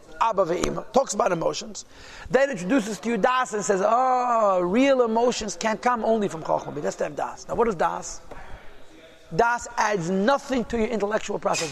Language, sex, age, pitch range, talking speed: English, male, 40-59, 180-220 Hz, 165 wpm